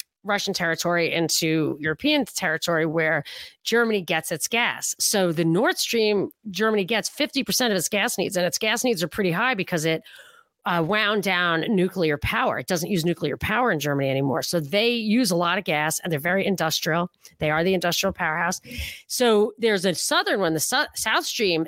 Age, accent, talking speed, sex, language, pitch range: 40-59, American, 185 wpm, female, English, 165-220 Hz